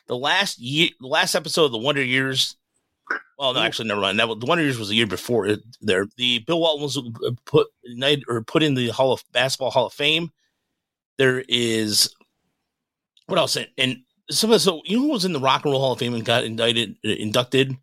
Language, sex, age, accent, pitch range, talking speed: English, male, 30-49, American, 120-155 Hz, 230 wpm